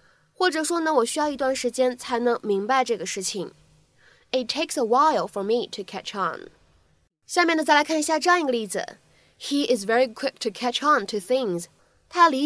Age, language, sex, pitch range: 20-39, Chinese, female, 210-285 Hz